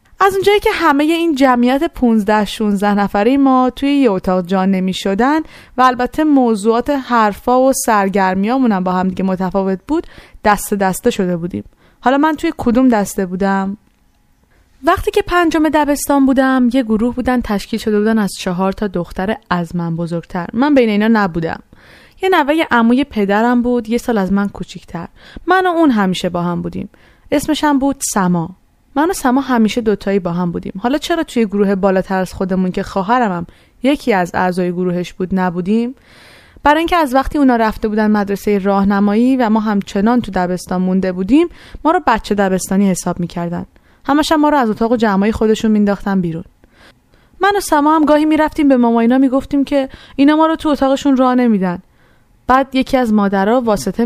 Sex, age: female, 20-39